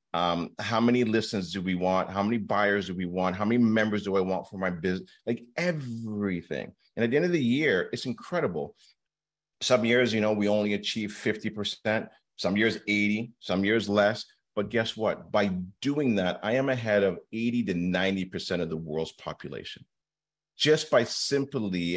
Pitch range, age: 90-115 Hz, 40-59